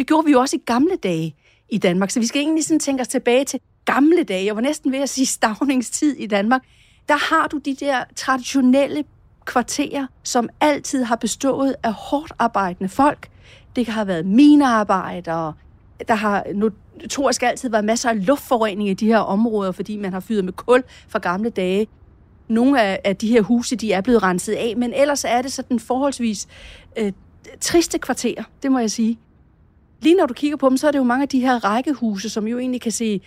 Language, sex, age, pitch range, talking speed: Danish, female, 40-59, 200-265 Hz, 205 wpm